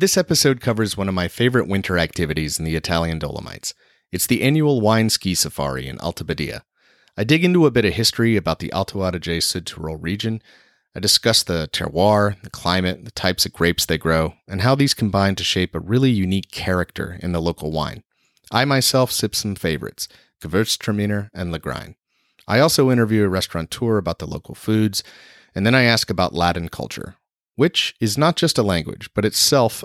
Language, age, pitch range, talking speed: English, 30-49, 85-120 Hz, 185 wpm